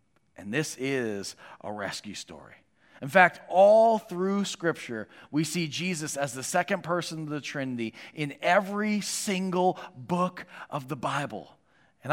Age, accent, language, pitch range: 40-59, American, English, 145-175 Hz